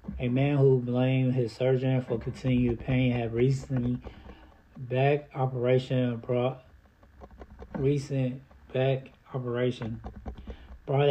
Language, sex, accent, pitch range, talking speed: English, male, American, 115-135 Hz, 95 wpm